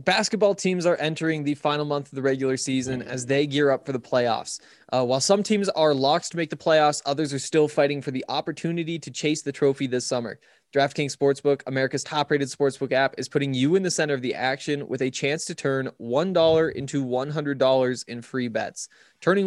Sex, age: male, 20-39